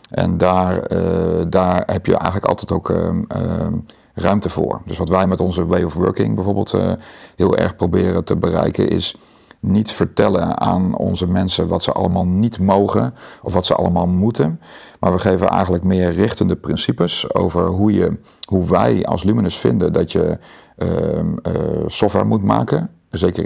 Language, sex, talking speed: Dutch, male, 170 wpm